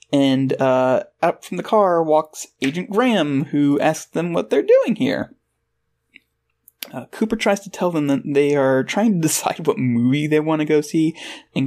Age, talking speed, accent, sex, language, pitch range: 20-39, 185 wpm, American, male, English, 130-210 Hz